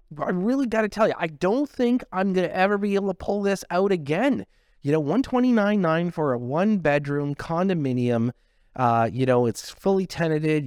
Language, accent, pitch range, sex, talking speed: English, American, 120-155 Hz, male, 190 wpm